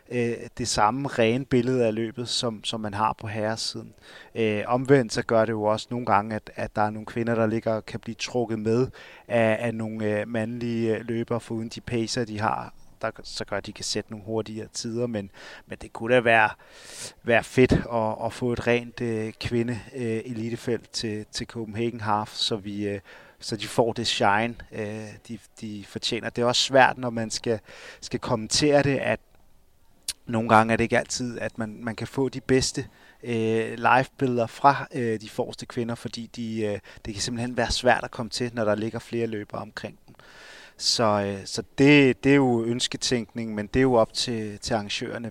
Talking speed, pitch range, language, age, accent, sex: 205 wpm, 110-120 Hz, Danish, 30-49, native, male